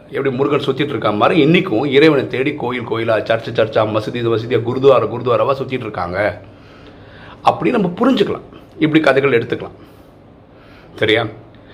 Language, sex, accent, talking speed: Tamil, male, native, 130 wpm